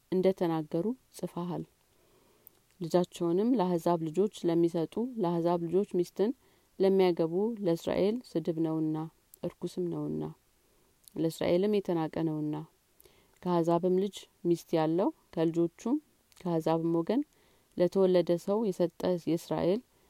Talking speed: 90 wpm